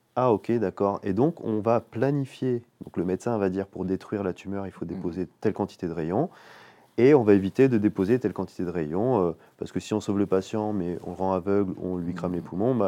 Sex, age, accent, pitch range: male, 30-49, French, 90-115 Hz